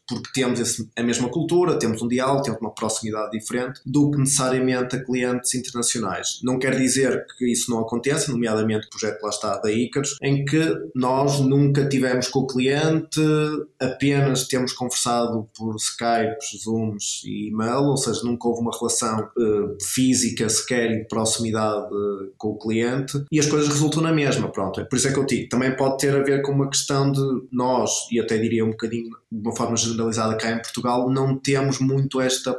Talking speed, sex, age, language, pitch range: 195 wpm, male, 20-39, Portuguese, 110-130 Hz